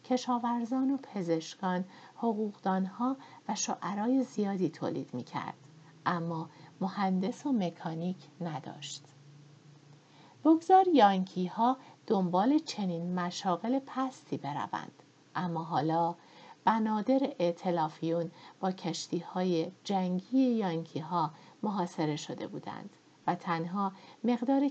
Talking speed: 95 wpm